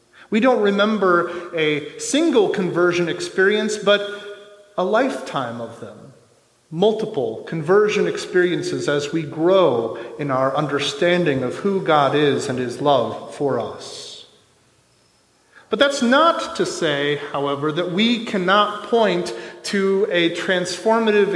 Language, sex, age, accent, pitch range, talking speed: English, male, 30-49, American, 165-230 Hz, 120 wpm